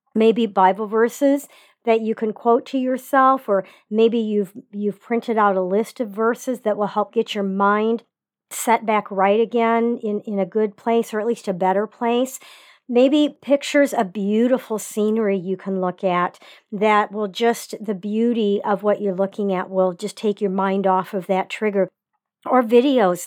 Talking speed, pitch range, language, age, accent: 180 wpm, 195-235 Hz, English, 50-69, American